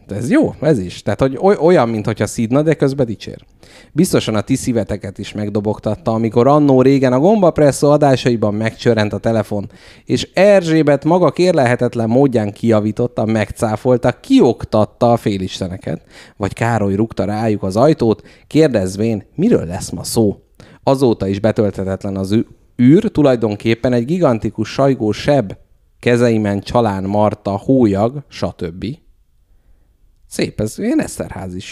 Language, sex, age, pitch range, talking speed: Hungarian, male, 30-49, 105-135 Hz, 130 wpm